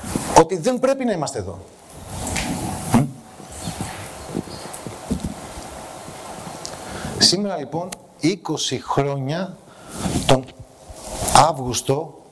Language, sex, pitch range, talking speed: Greek, male, 125-155 Hz, 60 wpm